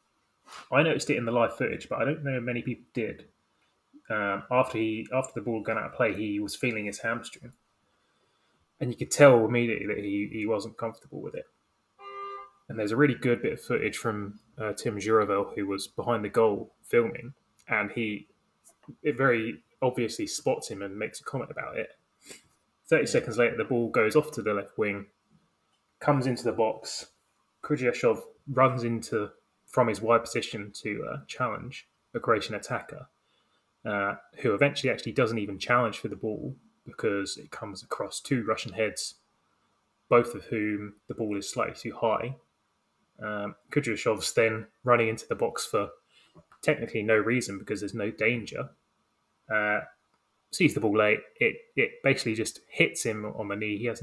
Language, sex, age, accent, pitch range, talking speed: English, male, 20-39, British, 105-125 Hz, 175 wpm